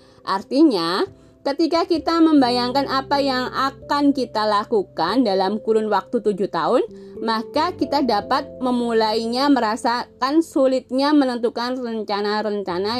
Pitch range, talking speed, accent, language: 200-280 Hz, 100 wpm, native, Indonesian